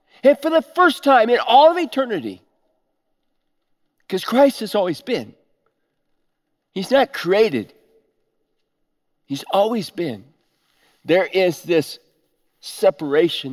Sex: male